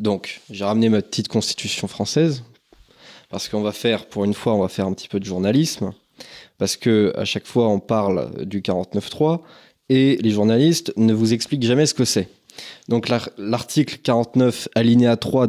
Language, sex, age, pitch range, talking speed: French, male, 20-39, 105-130 Hz, 175 wpm